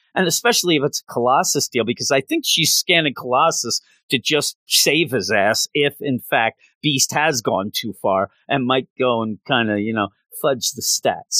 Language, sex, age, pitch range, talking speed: English, male, 40-59, 110-135 Hz, 195 wpm